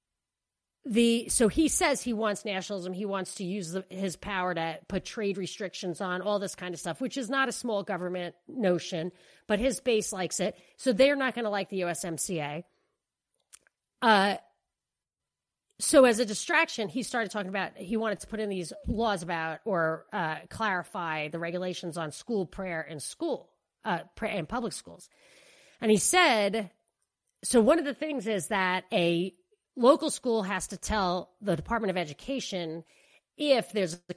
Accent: American